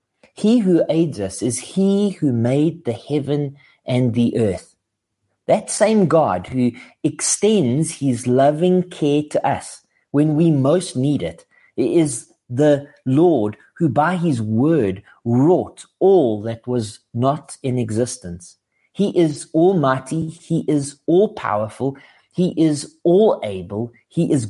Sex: male